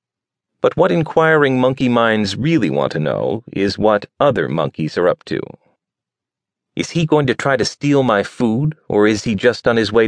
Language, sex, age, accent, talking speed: English, male, 40-59, American, 190 wpm